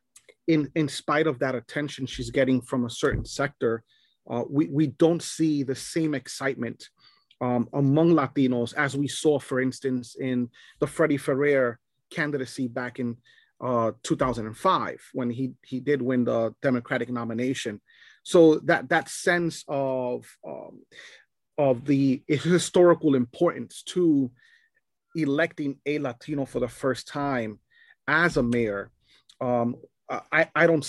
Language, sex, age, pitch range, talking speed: English, male, 30-49, 125-155 Hz, 135 wpm